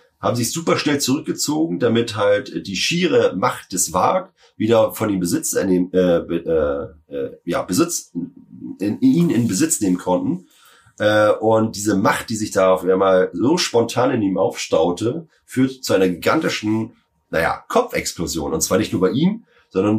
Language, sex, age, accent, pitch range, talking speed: German, male, 30-49, German, 90-135 Hz, 160 wpm